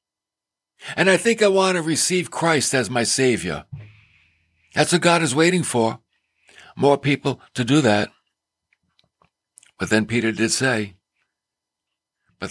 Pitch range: 110-160 Hz